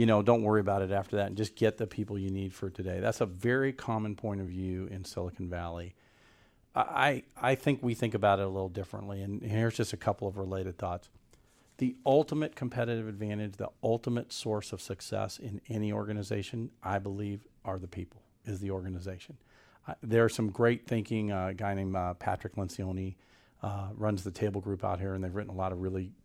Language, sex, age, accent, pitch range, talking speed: English, male, 50-69, American, 95-115 Hz, 210 wpm